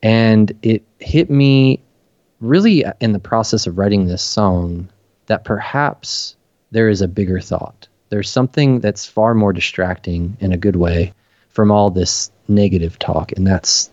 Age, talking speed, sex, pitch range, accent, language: 20-39, 155 wpm, male, 95-110 Hz, American, English